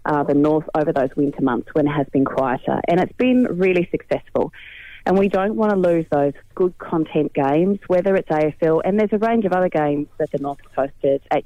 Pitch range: 150-180 Hz